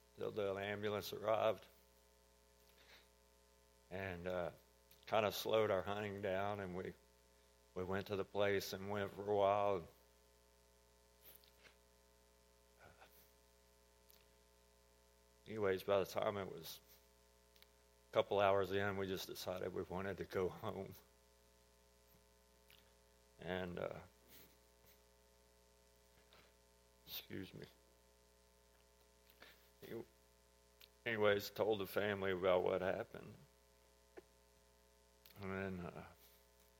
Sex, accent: male, American